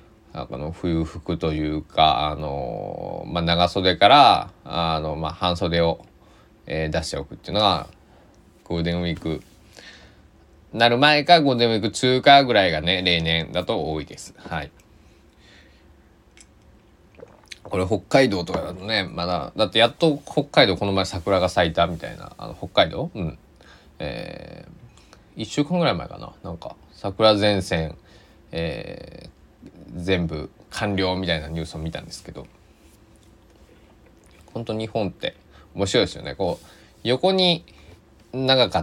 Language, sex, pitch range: Japanese, male, 80-105 Hz